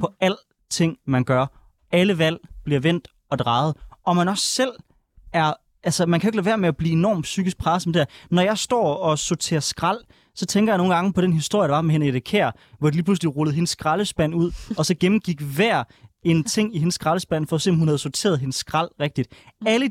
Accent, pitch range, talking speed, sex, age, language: native, 150-185 Hz, 230 wpm, male, 20-39, Danish